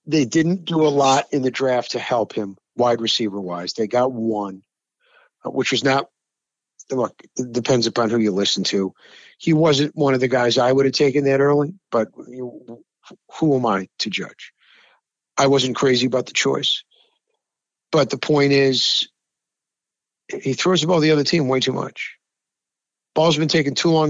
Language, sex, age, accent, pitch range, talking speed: English, male, 50-69, American, 130-175 Hz, 180 wpm